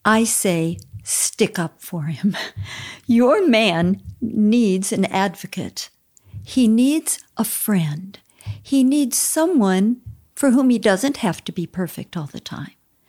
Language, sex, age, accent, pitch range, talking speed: English, female, 50-69, American, 165-230 Hz, 135 wpm